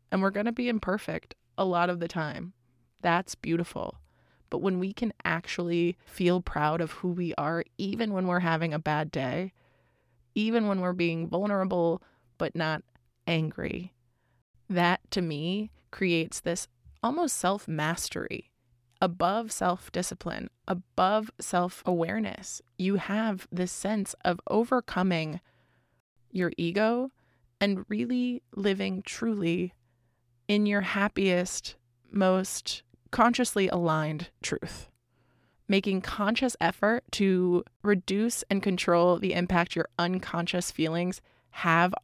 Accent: American